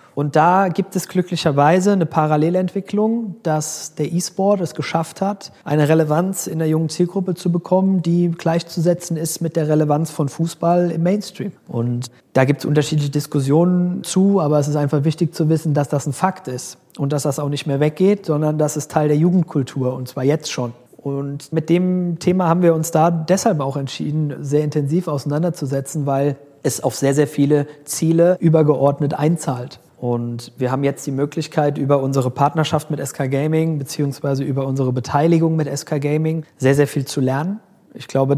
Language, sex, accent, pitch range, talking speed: German, male, German, 145-170 Hz, 180 wpm